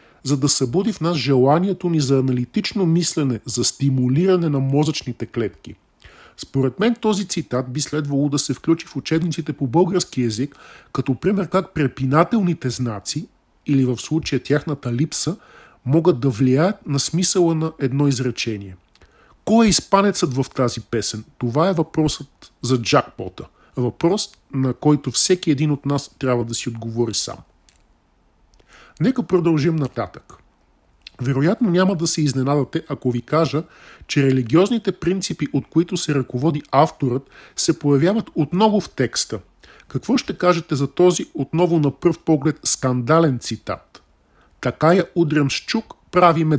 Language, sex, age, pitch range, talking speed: Bulgarian, male, 40-59, 130-175 Hz, 140 wpm